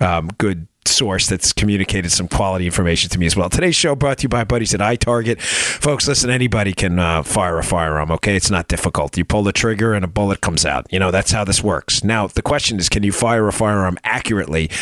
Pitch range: 95-115 Hz